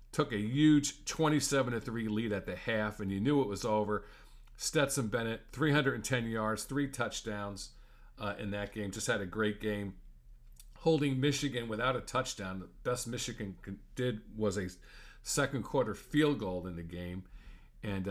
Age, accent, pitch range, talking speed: 50-69, American, 100-120 Hz, 155 wpm